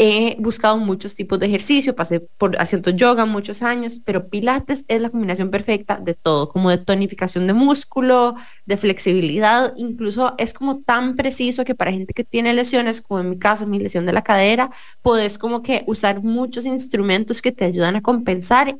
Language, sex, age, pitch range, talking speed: English, female, 20-39, 185-235 Hz, 185 wpm